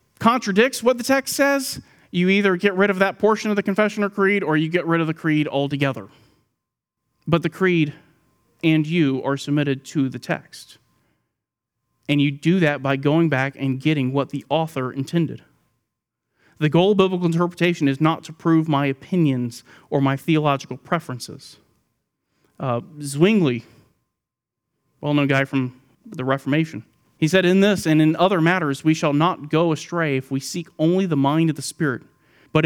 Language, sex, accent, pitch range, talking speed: English, male, American, 135-175 Hz, 170 wpm